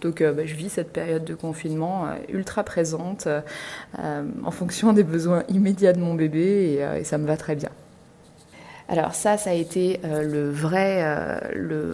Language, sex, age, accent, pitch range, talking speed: French, female, 20-39, French, 155-175 Hz, 155 wpm